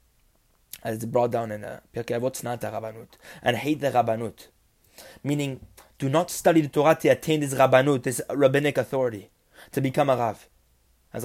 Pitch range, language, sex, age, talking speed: 105-140 Hz, English, male, 20-39, 165 wpm